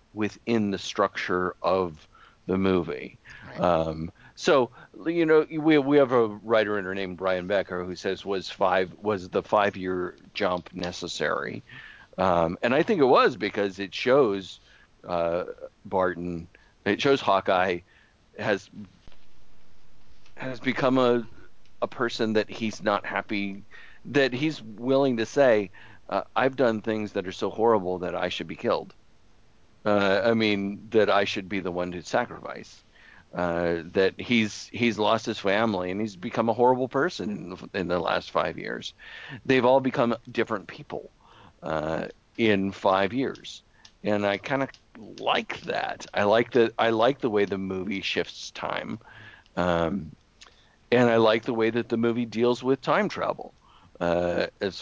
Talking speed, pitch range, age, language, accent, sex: 155 wpm, 95-120 Hz, 50-69, English, American, male